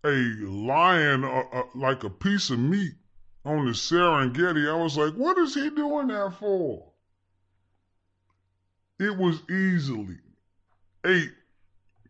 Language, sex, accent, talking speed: English, female, American, 125 wpm